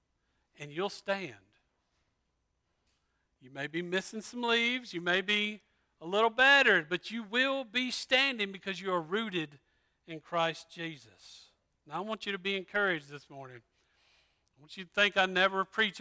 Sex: male